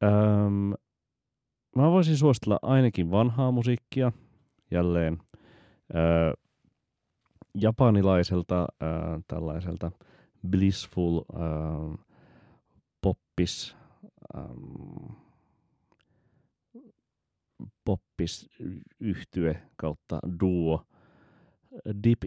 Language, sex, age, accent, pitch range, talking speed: Finnish, male, 30-49, native, 80-95 Hz, 55 wpm